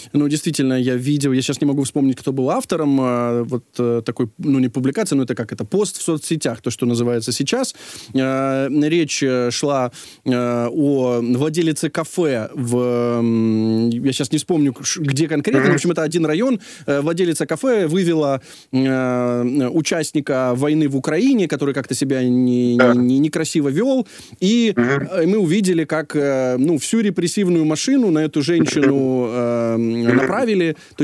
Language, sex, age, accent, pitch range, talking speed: Ukrainian, male, 20-39, native, 130-170 Hz, 135 wpm